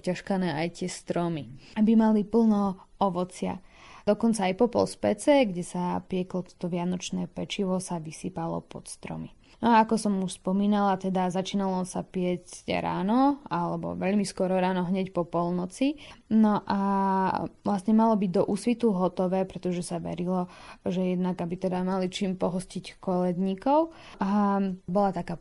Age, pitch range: 20-39, 180-210 Hz